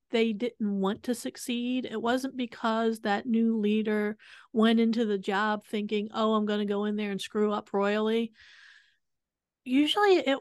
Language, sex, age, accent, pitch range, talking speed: English, female, 40-59, American, 210-255 Hz, 165 wpm